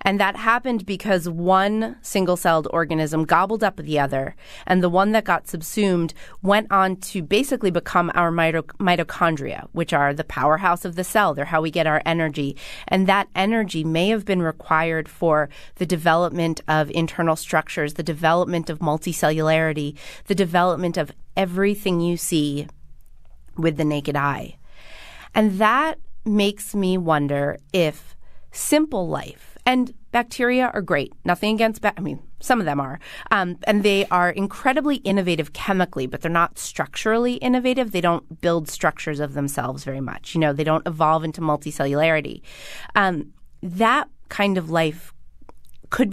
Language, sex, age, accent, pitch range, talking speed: English, female, 30-49, American, 155-195 Hz, 155 wpm